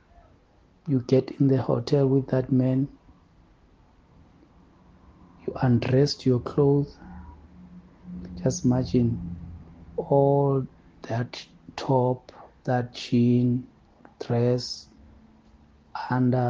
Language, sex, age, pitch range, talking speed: English, male, 60-79, 105-130 Hz, 75 wpm